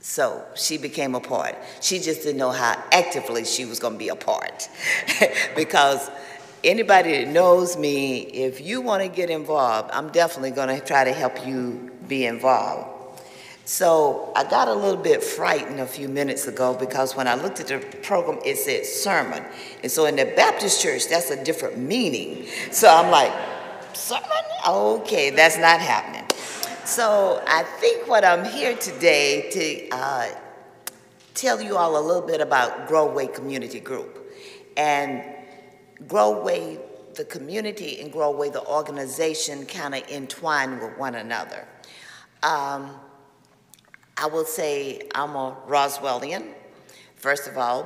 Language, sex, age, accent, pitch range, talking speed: English, female, 50-69, American, 130-170 Hz, 155 wpm